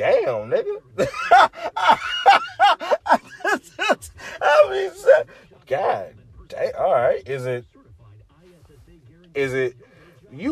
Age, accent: 20-39, American